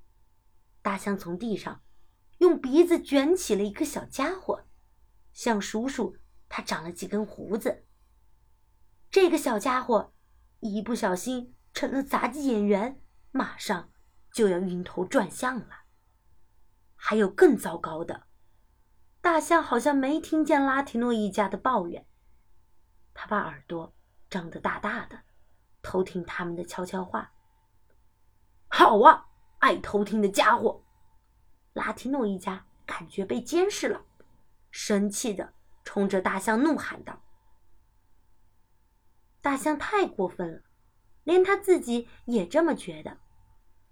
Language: Chinese